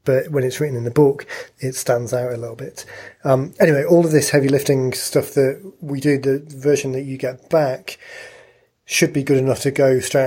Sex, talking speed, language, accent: male, 215 wpm, English, British